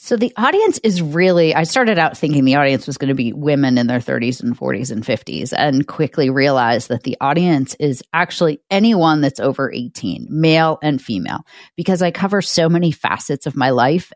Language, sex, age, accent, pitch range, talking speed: English, female, 30-49, American, 135-160 Hz, 200 wpm